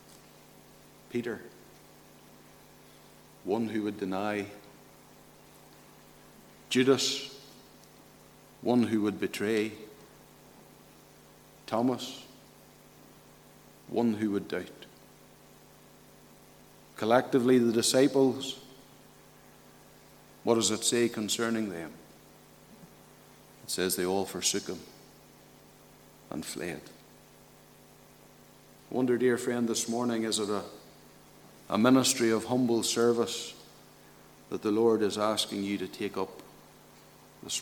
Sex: male